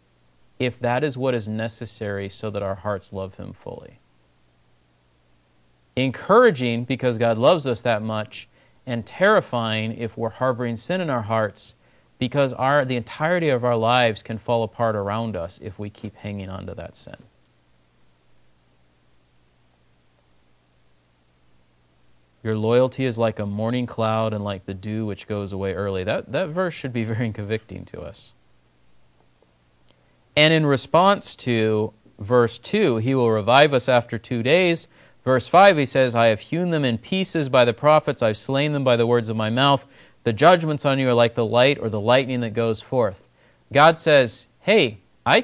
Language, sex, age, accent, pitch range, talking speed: English, male, 30-49, American, 100-150 Hz, 165 wpm